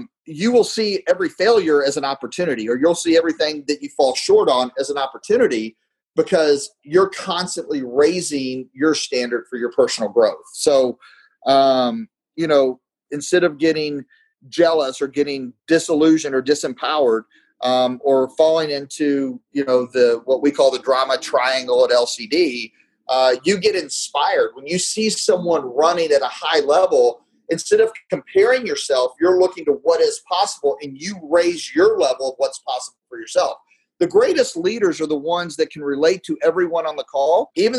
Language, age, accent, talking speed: English, 30-49, American, 170 wpm